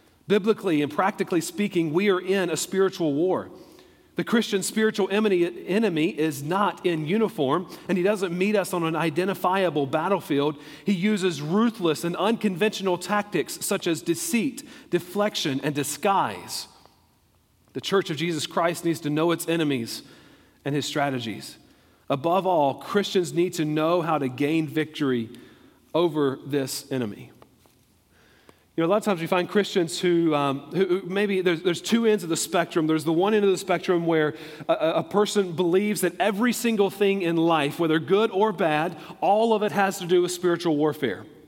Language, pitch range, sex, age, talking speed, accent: English, 160-195 Hz, male, 40-59, 170 wpm, American